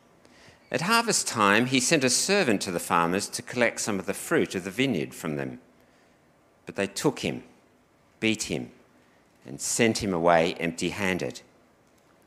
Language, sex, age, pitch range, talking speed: English, male, 50-69, 85-125 Hz, 155 wpm